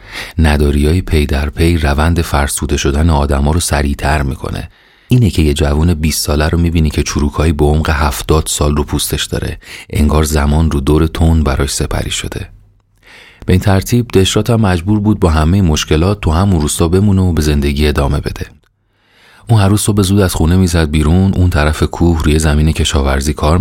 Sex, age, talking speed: male, 30-49, 180 wpm